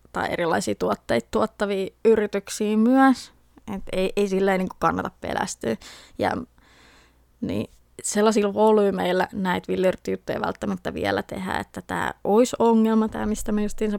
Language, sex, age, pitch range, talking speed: Finnish, female, 20-39, 185-220 Hz, 135 wpm